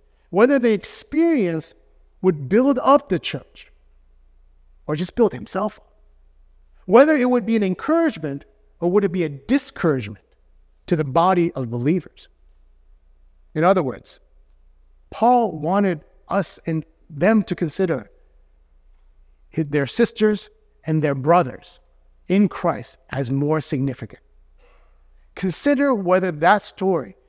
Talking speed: 120 wpm